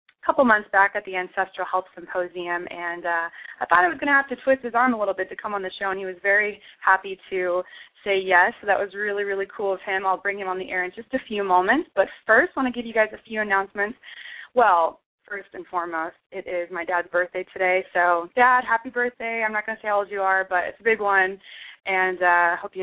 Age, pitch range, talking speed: 20-39, 185-220 Hz, 260 wpm